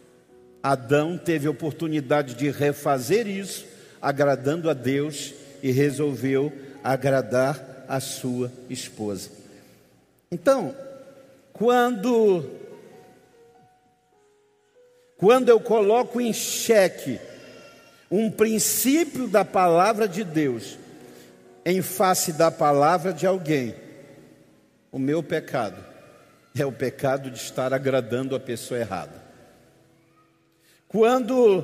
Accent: Brazilian